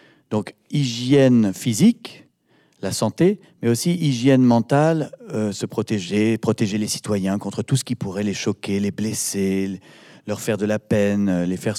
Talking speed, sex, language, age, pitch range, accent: 160 wpm, male, French, 40-59, 100-135 Hz, French